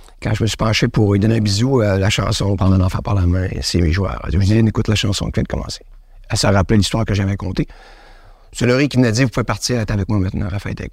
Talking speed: 315 wpm